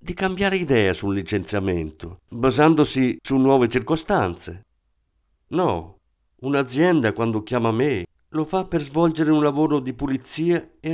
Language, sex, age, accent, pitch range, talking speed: Italian, male, 50-69, native, 95-140 Hz, 125 wpm